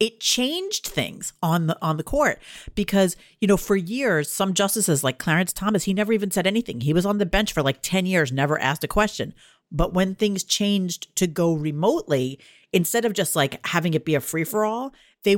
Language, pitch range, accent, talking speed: English, 155-205 Hz, American, 205 wpm